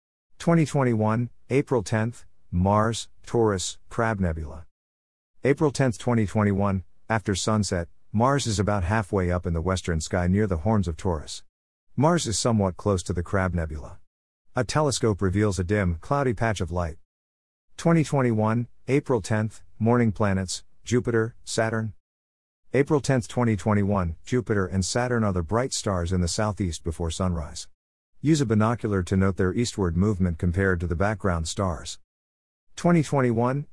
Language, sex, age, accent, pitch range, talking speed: English, male, 50-69, American, 90-115 Hz, 140 wpm